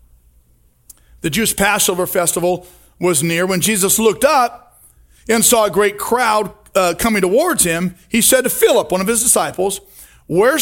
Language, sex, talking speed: English, male, 160 wpm